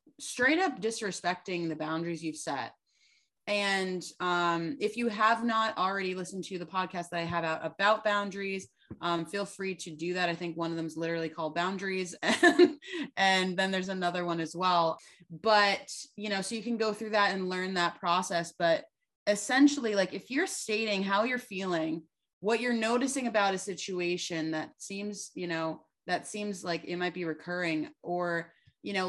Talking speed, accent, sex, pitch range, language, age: 180 wpm, American, female, 170-215 Hz, English, 20-39